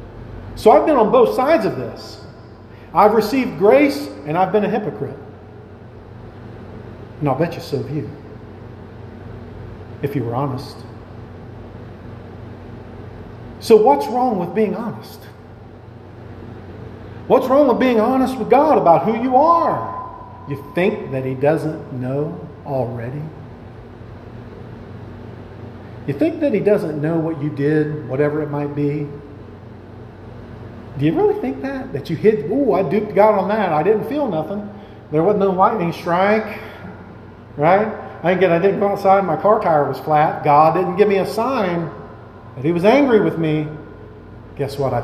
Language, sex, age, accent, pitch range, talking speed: English, male, 50-69, American, 110-180 Hz, 155 wpm